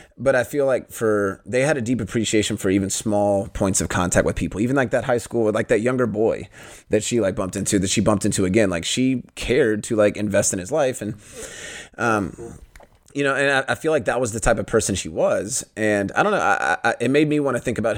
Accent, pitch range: American, 100-125 Hz